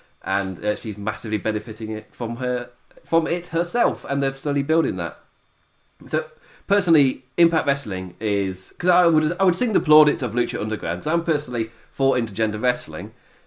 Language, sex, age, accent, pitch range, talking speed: English, male, 30-49, British, 110-145 Hz, 180 wpm